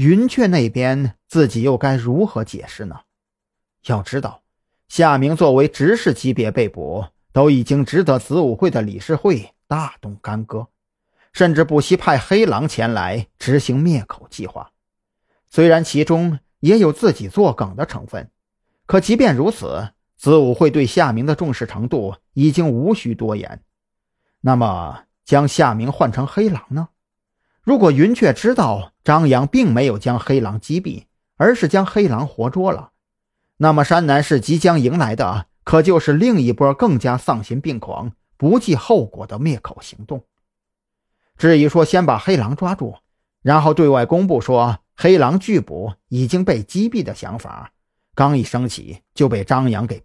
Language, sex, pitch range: Chinese, male, 120-165 Hz